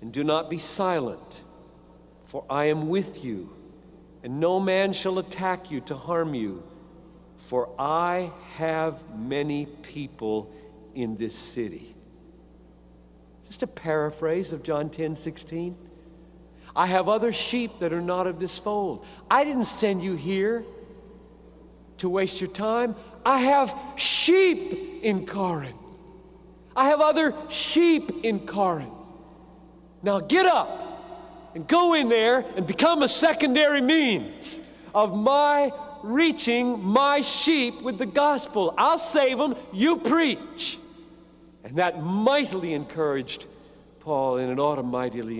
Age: 60-79